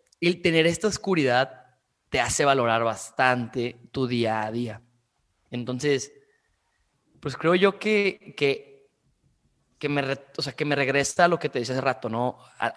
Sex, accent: male, Mexican